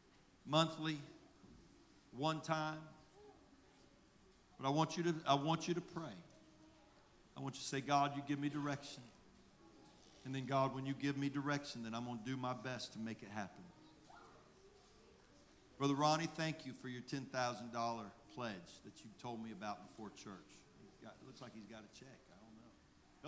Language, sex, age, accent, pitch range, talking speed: English, male, 50-69, American, 115-145 Hz, 175 wpm